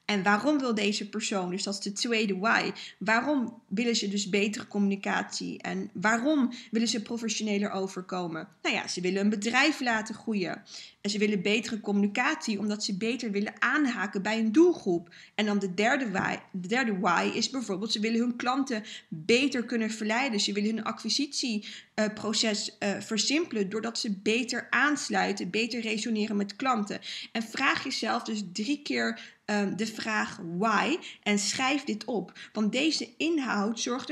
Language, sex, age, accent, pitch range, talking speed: Dutch, female, 20-39, Dutch, 205-245 Hz, 155 wpm